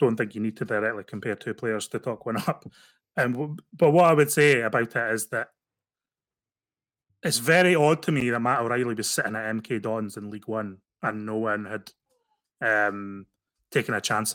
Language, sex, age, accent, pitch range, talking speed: English, male, 20-39, British, 105-120 Hz, 200 wpm